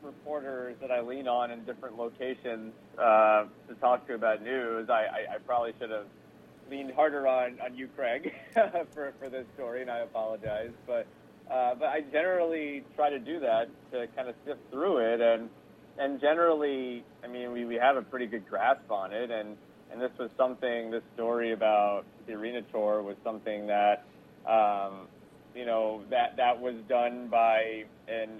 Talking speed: 180 wpm